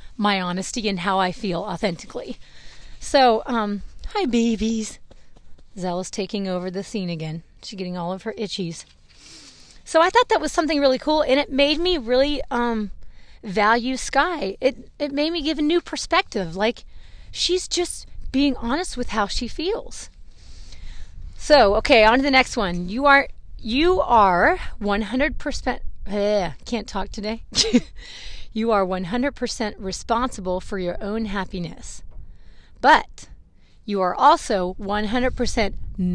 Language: English